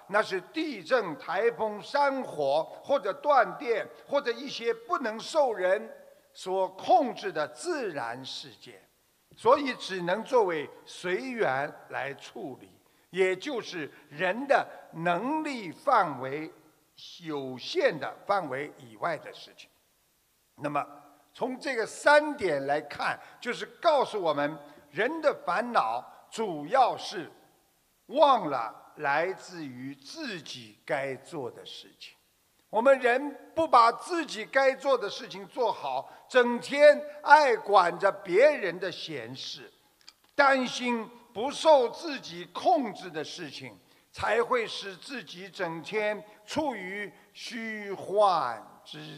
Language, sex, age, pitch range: Chinese, male, 50-69, 180-285 Hz